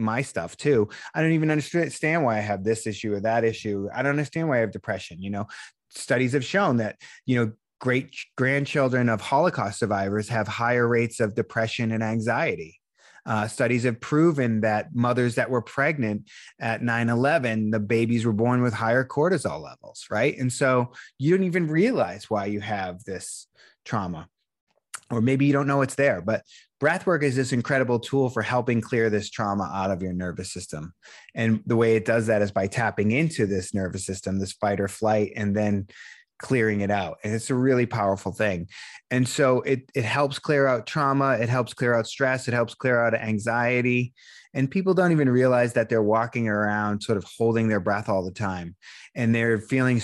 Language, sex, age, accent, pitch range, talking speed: English, male, 30-49, American, 105-130 Hz, 195 wpm